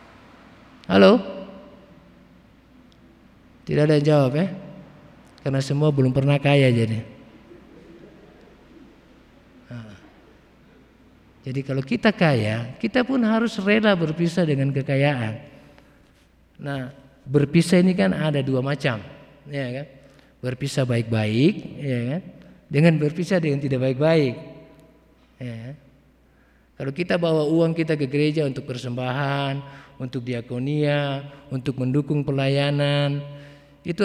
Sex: male